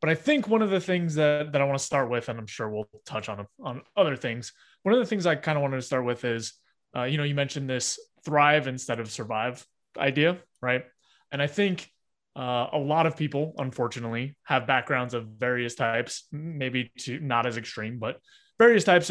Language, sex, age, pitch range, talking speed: English, male, 20-39, 120-155 Hz, 215 wpm